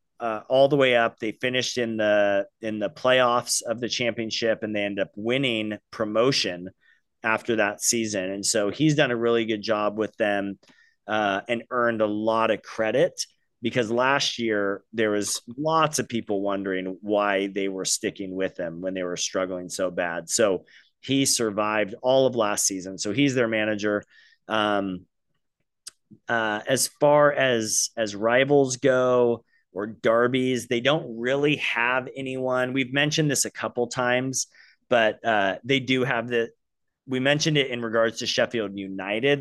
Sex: male